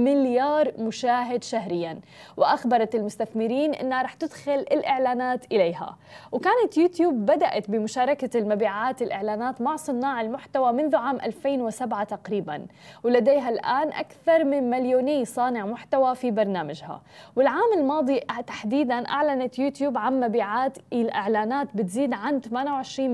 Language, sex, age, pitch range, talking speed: Arabic, female, 20-39, 225-290 Hz, 110 wpm